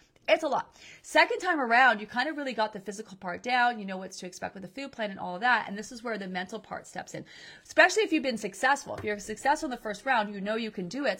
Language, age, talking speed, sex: English, 30-49, 295 wpm, female